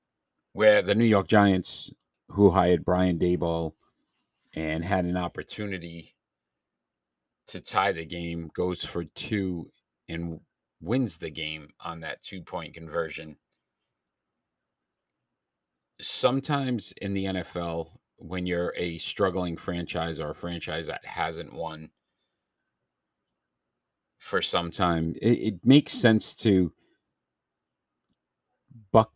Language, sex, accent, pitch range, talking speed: English, male, American, 80-100 Hz, 105 wpm